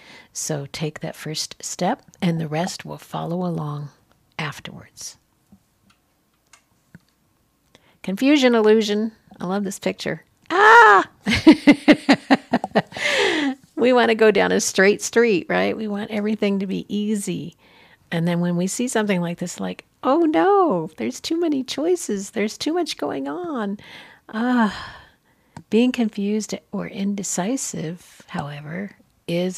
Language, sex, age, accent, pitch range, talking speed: English, female, 50-69, American, 175-220 Hz, 125 wpm